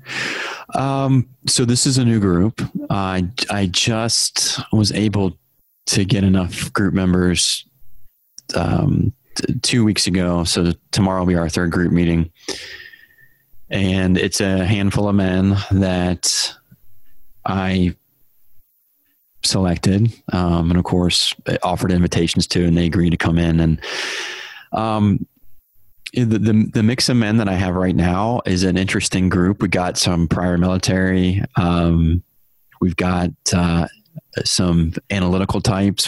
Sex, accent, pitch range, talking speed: male, American, 85-105 Hz, 135 wpm